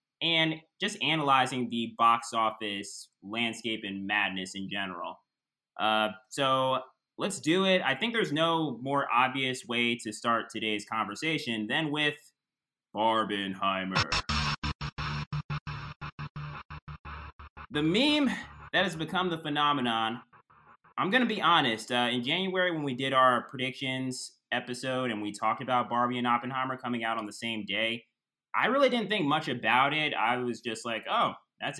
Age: 20-39